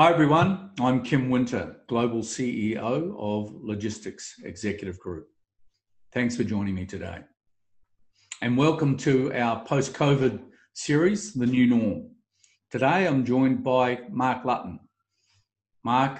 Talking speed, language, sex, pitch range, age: 120 wpm, English, male, 105-130 Hz, 50-69